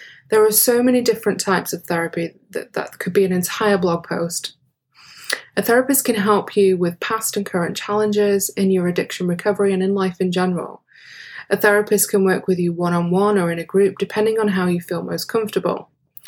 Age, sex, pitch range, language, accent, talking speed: 20-39, female, 175-205 Hz, English, British, 195 wpm